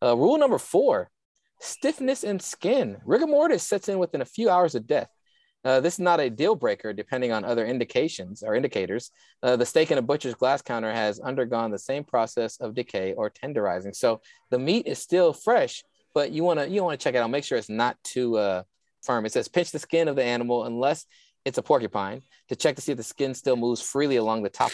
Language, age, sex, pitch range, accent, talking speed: English, 20-39, male, 115-160 Hz, American, 230 wpm